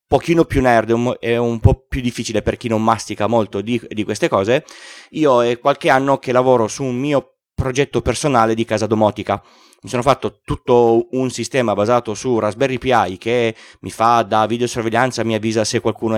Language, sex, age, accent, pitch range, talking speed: Italian, male, 30-49, native, 105-125 Hz, 185 wpm